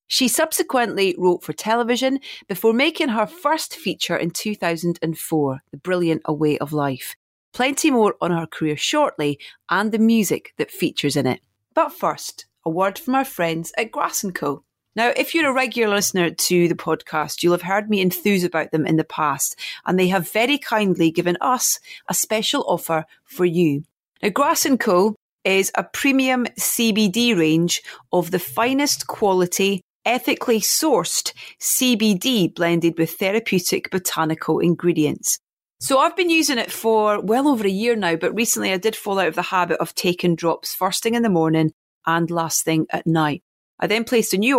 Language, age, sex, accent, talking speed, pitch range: English, 30-49, female, British, 180 wpm, 165-230 Hz